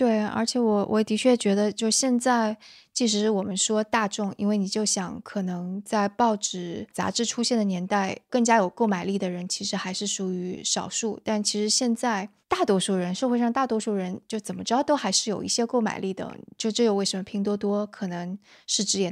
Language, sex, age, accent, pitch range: Chinese, female, 20-39, native, 190-220 Hz